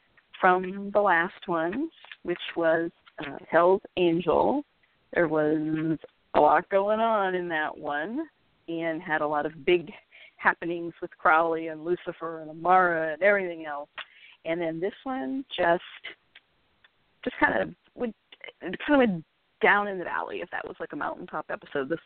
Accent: American